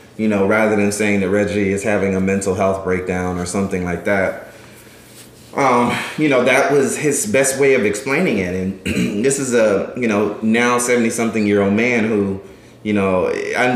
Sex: male